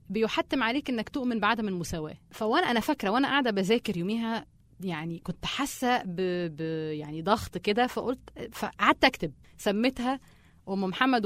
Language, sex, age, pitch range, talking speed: Arabic, female, 30-49, 170-245 Hz, 145 wpm